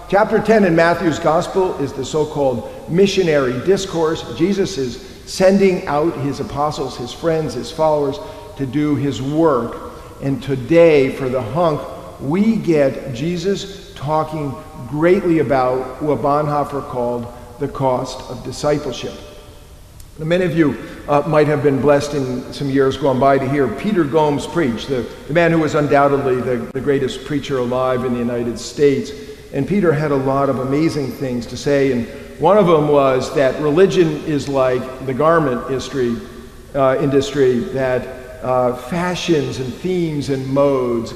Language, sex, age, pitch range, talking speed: English, male, 50-69, 130-155 Hz, 155 wpm